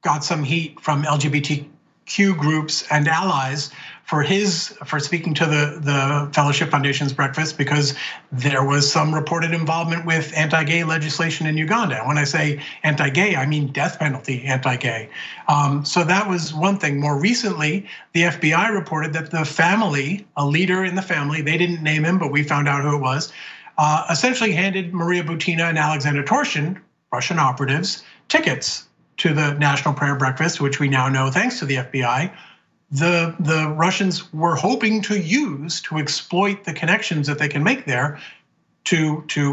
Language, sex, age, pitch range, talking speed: English, male, 40-59, 145-175 Hz, 165 wpm